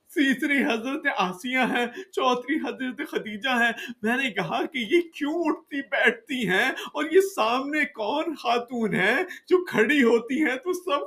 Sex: male